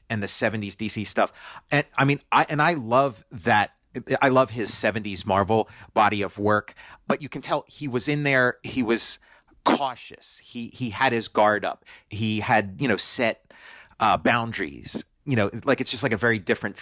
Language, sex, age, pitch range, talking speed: English, male, 30-49, 105-130 Hz, 195 wpm